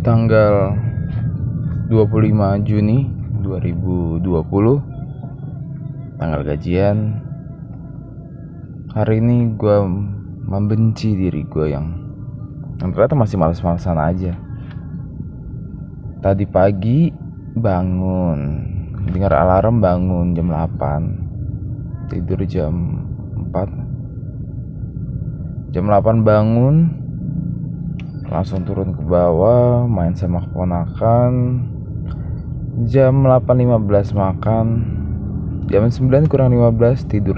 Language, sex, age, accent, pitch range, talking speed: Indonesian, male, 20-39, native, 95-125 Hz, 75 wpm